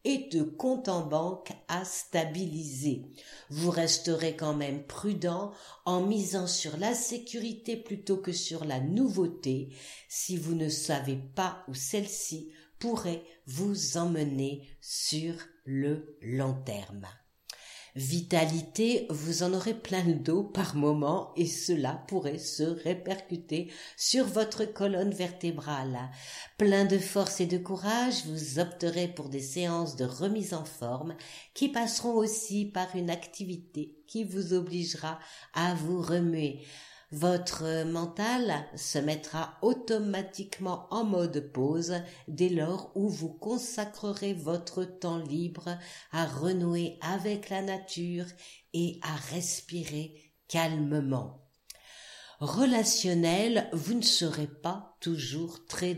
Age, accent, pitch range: 50-69, French, 155-195 Hz